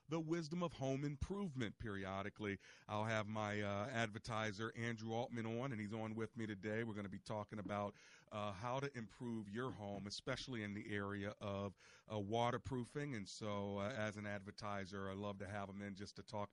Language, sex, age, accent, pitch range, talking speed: English, male, 40-59, American, 100-115 Hz, 195 wpm